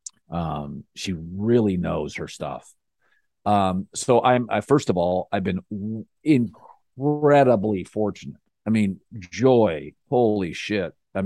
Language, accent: English, American